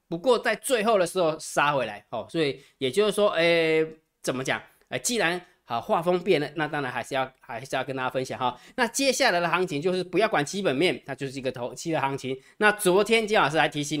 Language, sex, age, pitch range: Chinese, male, 20-39, 135-185 Hz